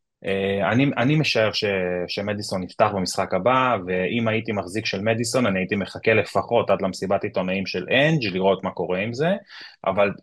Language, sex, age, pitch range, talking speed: Hebrew, male, 30-49, 95-120 Hz, 160 wpm